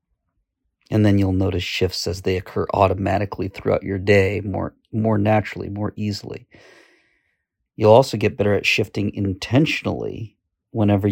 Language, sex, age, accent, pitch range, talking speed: English, male, 40-59, American, 95-110 Hz, 135 wpm